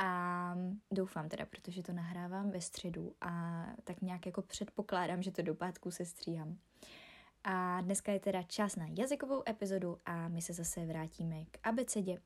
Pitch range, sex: 170-220 Hz, female